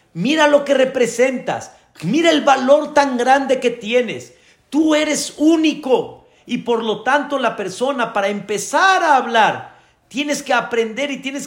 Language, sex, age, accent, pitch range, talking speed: Spanish, male, 40-59, Mexican, 165-275 Hz, 150 wpm